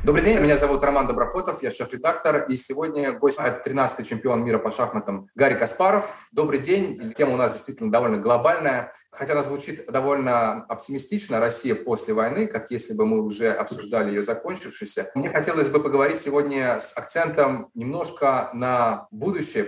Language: Russian